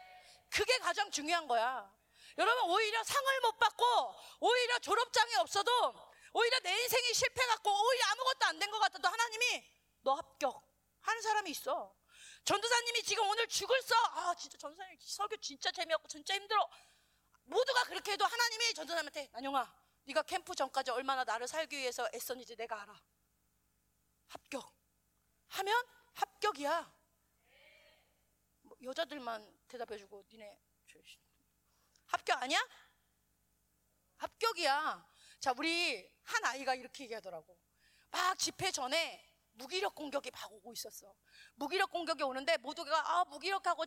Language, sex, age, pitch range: Korean, female, 30-49, 255-400 Hz